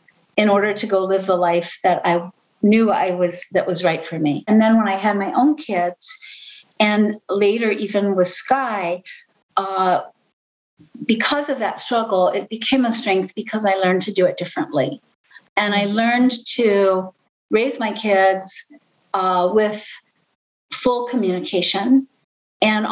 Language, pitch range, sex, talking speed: English, 185-225 Hz, female, 150 wpm